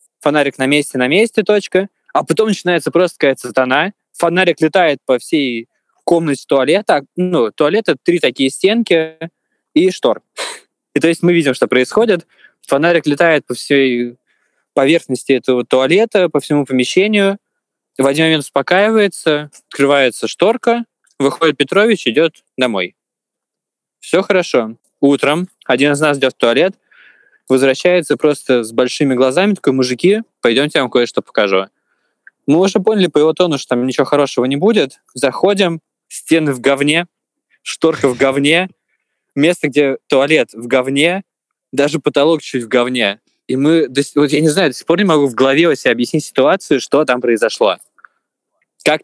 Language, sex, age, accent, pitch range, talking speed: Russian, male, 20-39, native, 135-185 Hz, 150 wpm